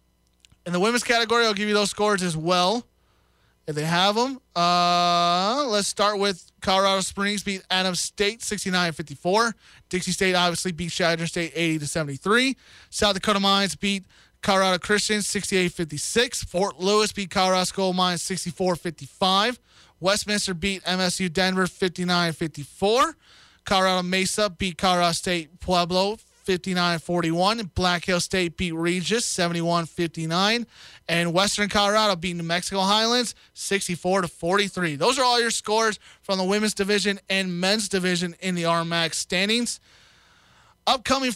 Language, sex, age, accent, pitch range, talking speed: English, male, 20-39, American, 175-205 Hz, 130 wpm